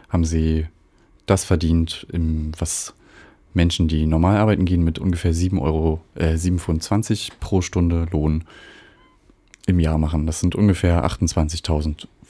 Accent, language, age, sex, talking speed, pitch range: German, German, 30-49, male, 130 wpm, 80-95 Hz